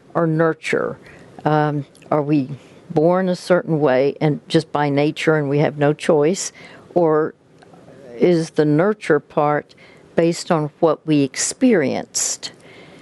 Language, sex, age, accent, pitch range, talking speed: English, female, 60-79, American, 150-180 Hz, 130 wpm